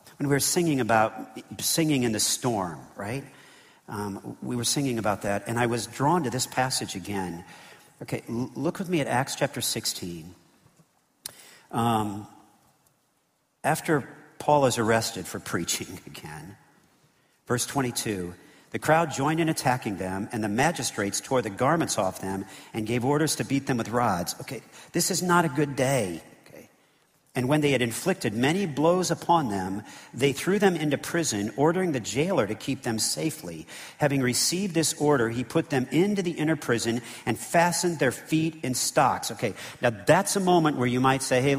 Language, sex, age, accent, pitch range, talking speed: English, male, 50-69, American, 110-155 Hz, 170 wpm